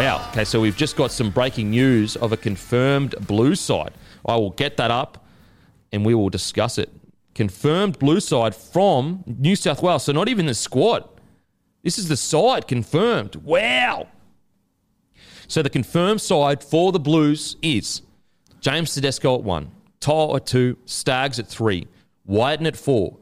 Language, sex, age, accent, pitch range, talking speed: English, male, 30-49, Australian, 100-150 Hz, 165 wpm